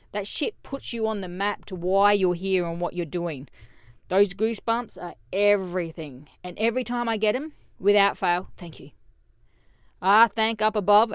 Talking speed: 180 wpm